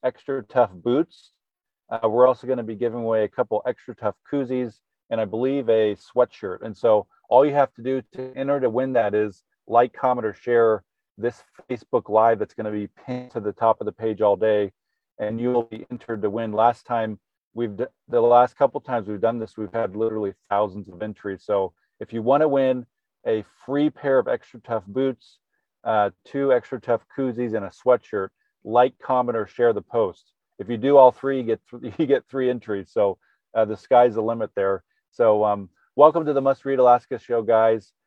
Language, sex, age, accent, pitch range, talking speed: English, male, 40-59, American, 105-130 Hz, 210 wpm